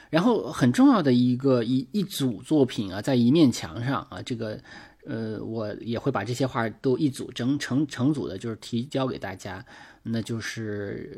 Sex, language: male, Chinese